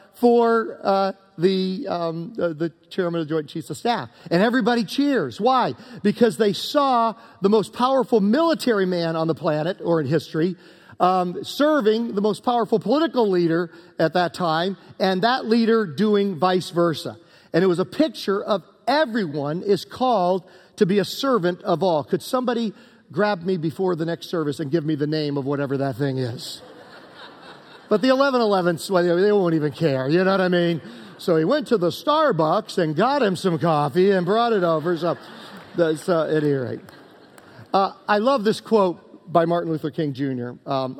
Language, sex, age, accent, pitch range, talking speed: English, male, 40-59, American, 165-220 Hz, 180 wpm